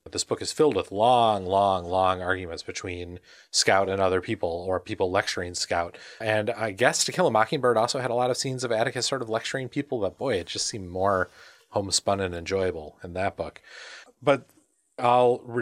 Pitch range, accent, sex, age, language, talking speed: 95-135 Hz, American, male, 30-49, English, 195 wpm